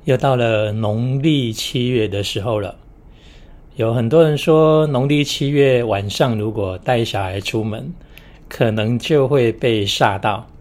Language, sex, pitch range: Chinese, male, 105-135 Hz